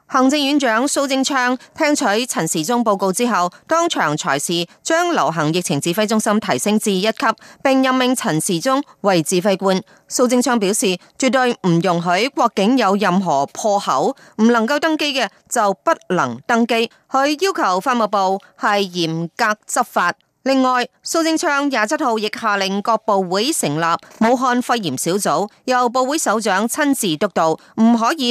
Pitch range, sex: 190-255 Hz, female